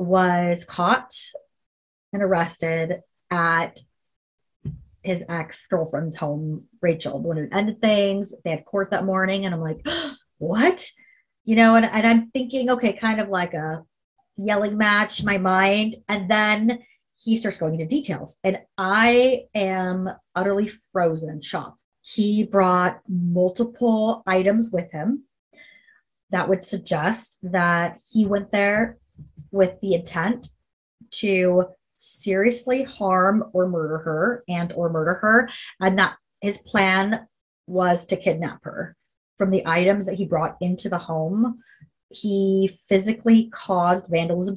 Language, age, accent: English, 30-49, American